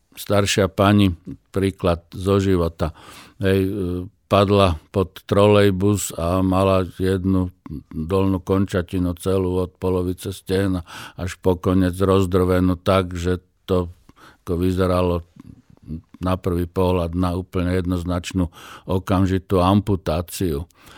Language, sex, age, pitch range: Slovak, male, 50-69, 90-100 Hz